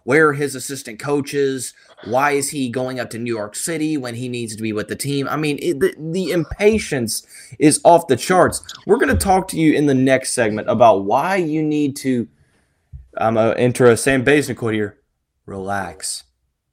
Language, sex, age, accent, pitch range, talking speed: English, male, 20-39, American, 115-155 Hz, 205 wpm